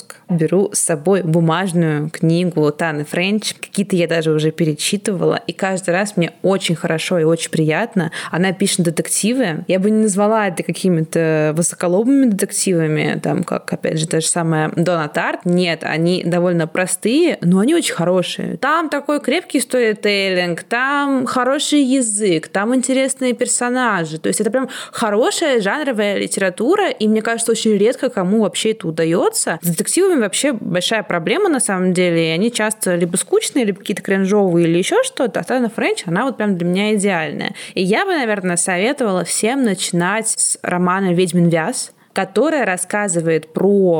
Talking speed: 155 wpm